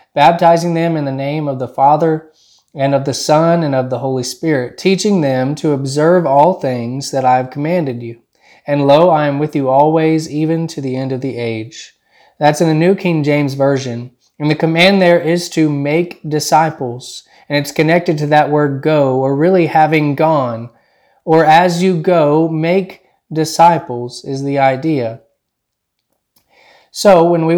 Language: English